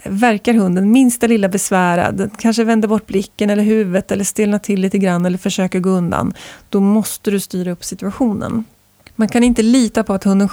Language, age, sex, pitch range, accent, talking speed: Swedish, 20-39, female, 190-235 Hz, native, 190 wpm